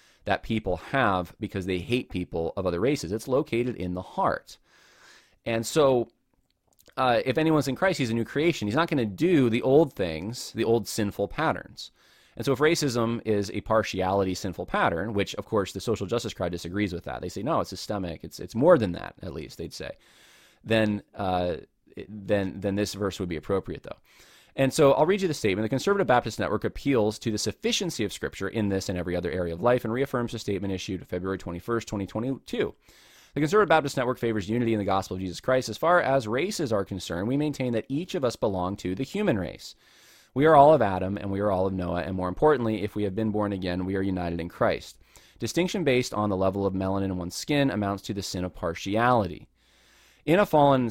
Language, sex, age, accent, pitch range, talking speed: English, male, 20-39, American, 95-125 Hz, 220 wpm